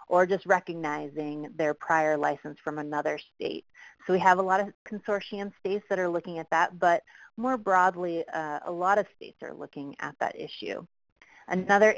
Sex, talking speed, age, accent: female, 180 wpm, 30-49, American